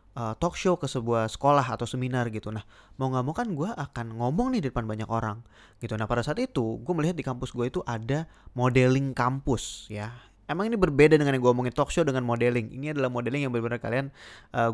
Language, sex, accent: Indonesian, male, native